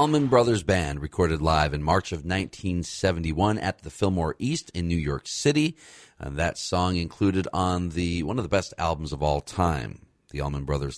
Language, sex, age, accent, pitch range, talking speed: English, male, 40-59, American, 75-95 Hz, 185 wpm